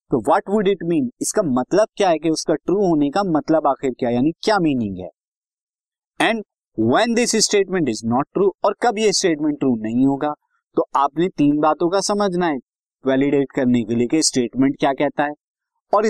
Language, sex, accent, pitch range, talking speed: Hindi, male, native, 130-205 Hz, 190 wpm